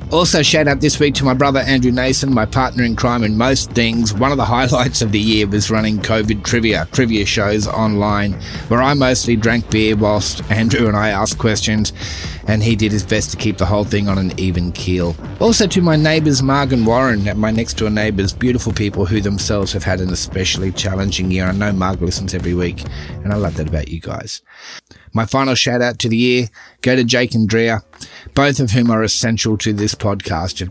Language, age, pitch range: English, 30-49, 100-130 Hz